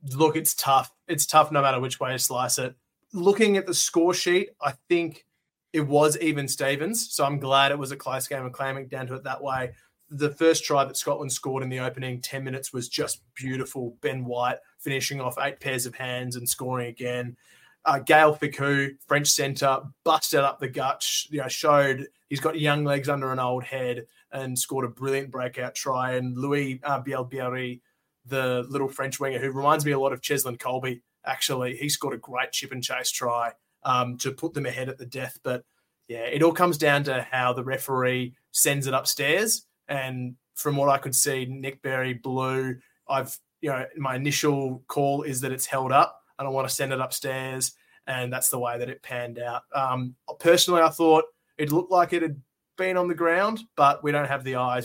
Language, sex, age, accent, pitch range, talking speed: English, male, 20-39, Australian, 130-145 Hz, 210 wpm